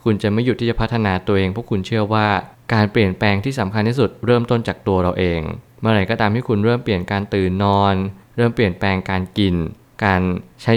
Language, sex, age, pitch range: Thai, male, 20-39, 95-115 Hz